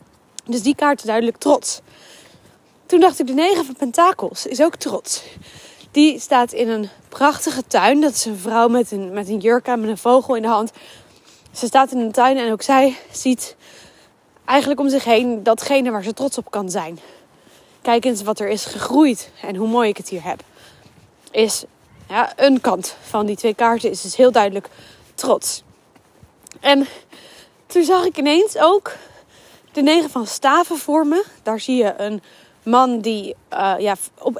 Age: 20-39